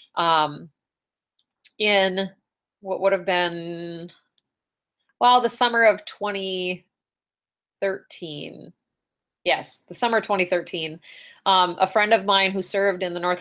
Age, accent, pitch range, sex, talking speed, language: 30-49, American, 165-200 Hz, female, 115 wpm, English